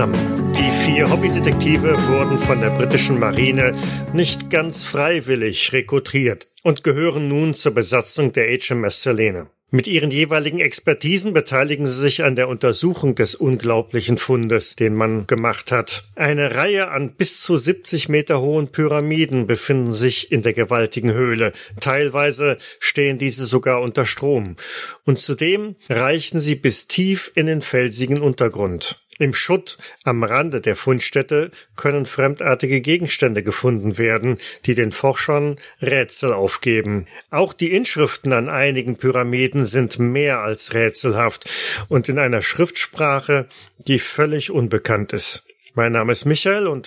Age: 40-59